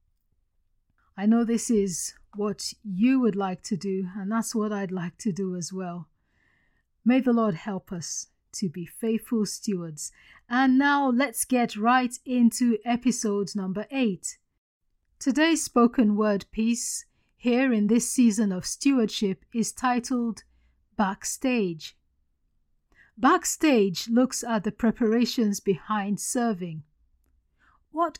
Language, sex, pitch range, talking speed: English, female, 190-245 Hz, 125 wpm